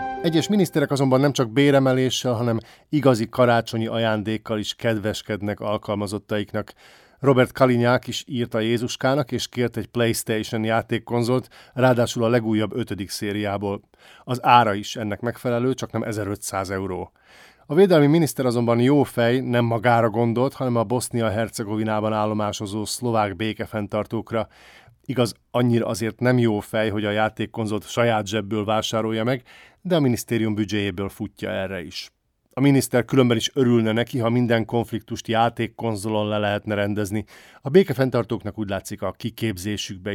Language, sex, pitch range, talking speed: Hungarian, male, 105-125 Hz, 140 wpm